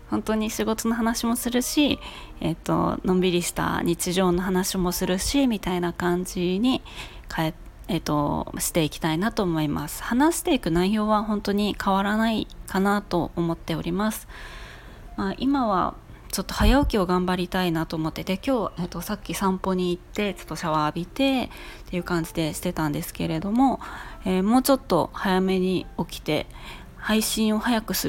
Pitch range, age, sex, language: 175-225 Hz, 20-39, female, Japanese